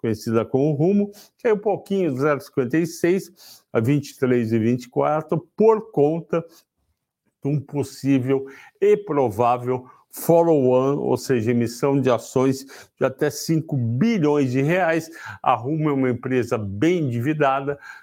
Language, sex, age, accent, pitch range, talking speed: Portuguese, male, 60-79, Brazilian, 120-150 Hz, 130 wpm